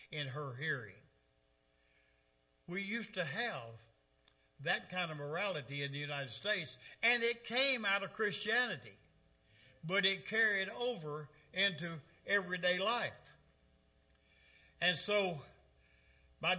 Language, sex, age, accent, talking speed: English, male, 60-79, American, 110 wpm